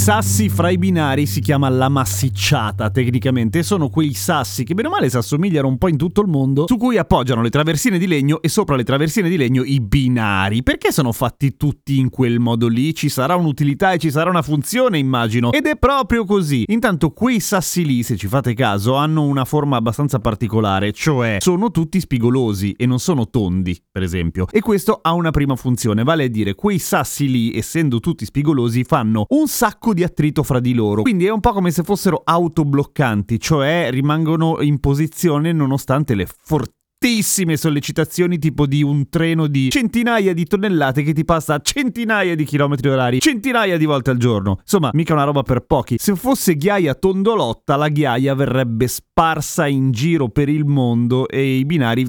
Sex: male